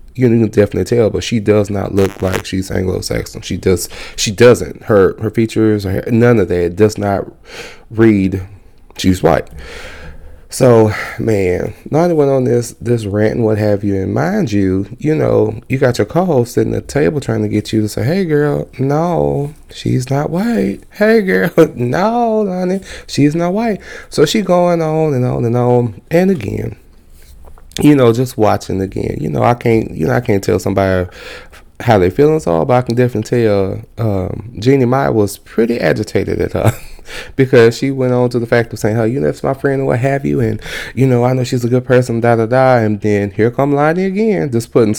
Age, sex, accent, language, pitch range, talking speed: 30-49, male, American, English, 105-140 Hz, 205 wpm